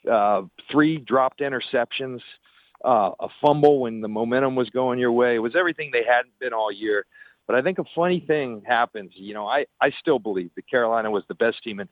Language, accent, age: English, American, 50-69